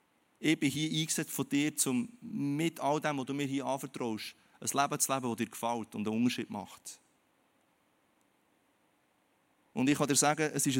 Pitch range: 120-145 Hz